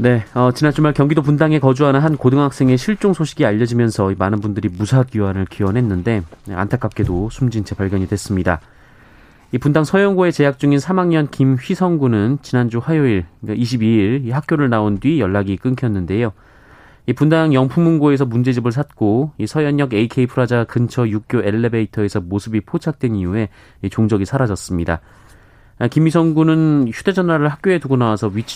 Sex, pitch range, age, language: male, 100-140 Hz, 30-49, Korean